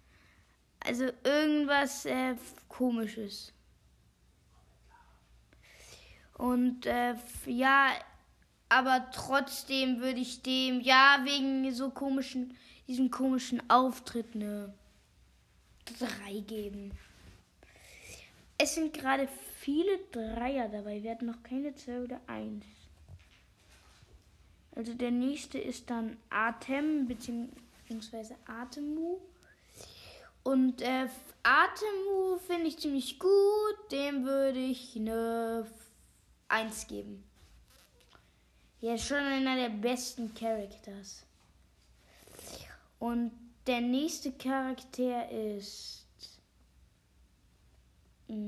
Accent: German